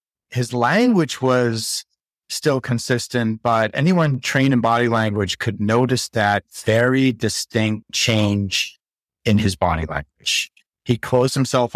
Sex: male